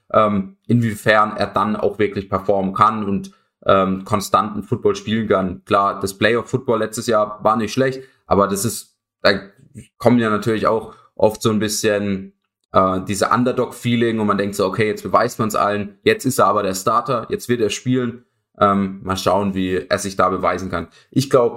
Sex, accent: male, German